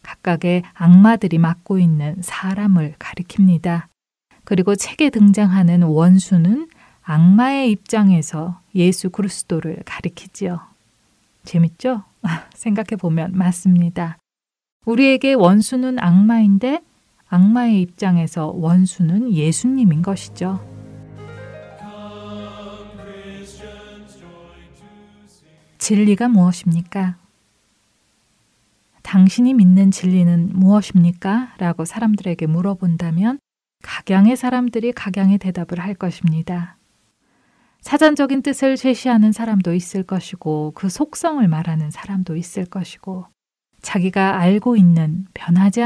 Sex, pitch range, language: female, 175-210 Hz, Korean